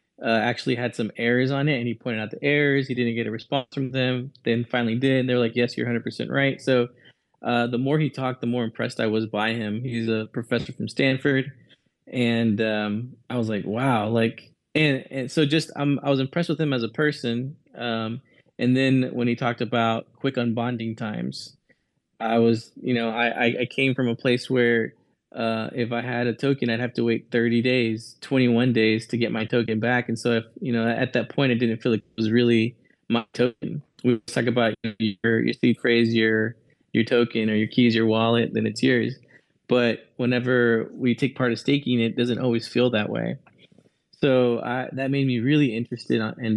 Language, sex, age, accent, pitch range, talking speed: English, male, 20-39, American, 115-130 Hz, 220 wpm